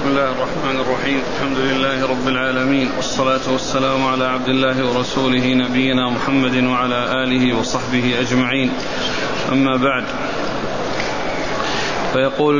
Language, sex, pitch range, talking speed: Arabic, male, 135-150 Hz, 110 wpm